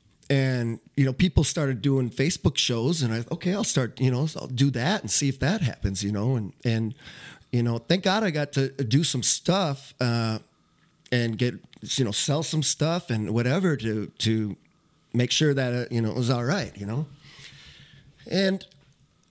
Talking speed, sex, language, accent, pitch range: 195 wpm, male, English, American, 115-145 Hz